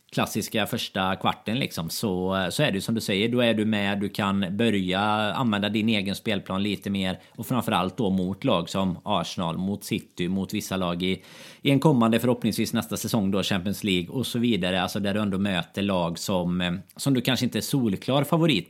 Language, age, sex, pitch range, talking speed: Swedish, 30-49, male, 95-115 Hz, 200 wpm